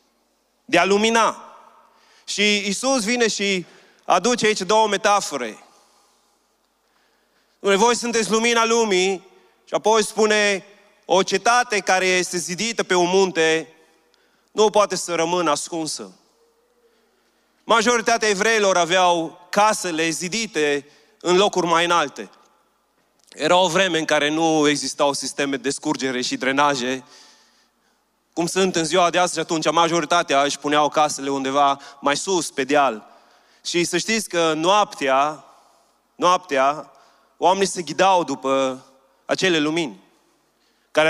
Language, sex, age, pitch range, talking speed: Romanian, male, 30-49, 150-200 Hz, 120 wpm